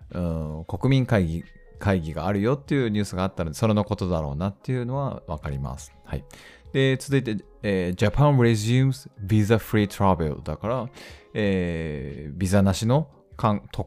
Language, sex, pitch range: Japanese, male, 80-115 Hz